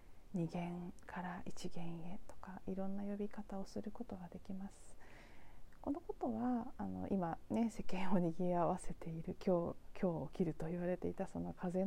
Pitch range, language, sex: 175-220 Hz, Japanese, female